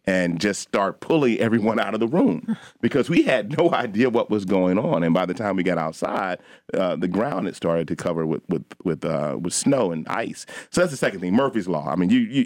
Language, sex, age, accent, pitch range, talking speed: English, male, 40-59, American, 80-95 Hz, 245 wpm